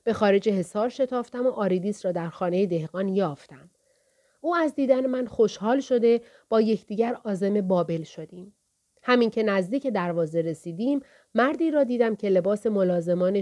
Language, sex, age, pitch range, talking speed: Persian, female, 30-49, 180-245 Hz, 150 wpm